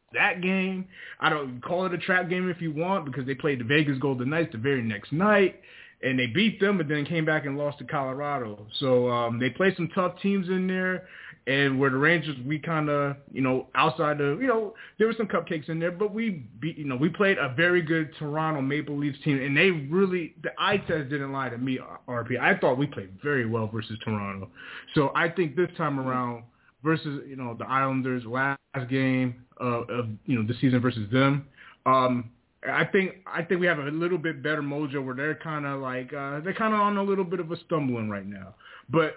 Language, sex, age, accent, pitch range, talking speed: English, male, 20-39, American, 130-170 Hz, 225 wpm